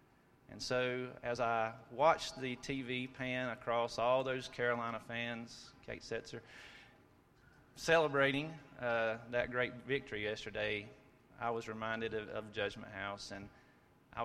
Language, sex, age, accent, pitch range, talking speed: English, male, 30-49, American, 110-140 Hz, 125 wpm